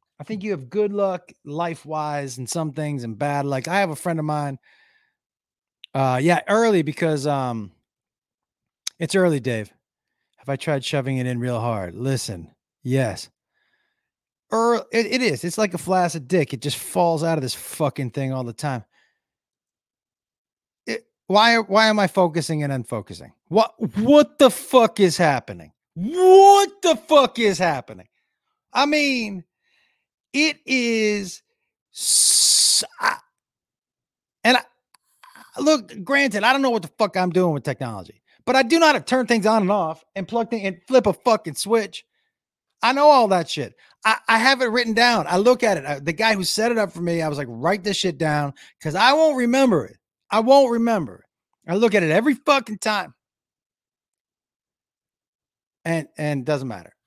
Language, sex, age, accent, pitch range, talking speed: English, male, 30-49, American, 145-230 Hz, 175 wpm